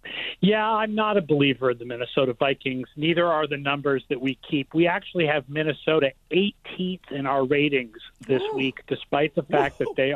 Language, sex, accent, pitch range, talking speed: English, male, American, 140-190 Hz, 185 wpm